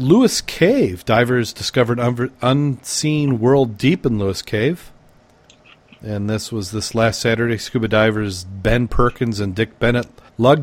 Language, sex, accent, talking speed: English, male, American, 140 wpm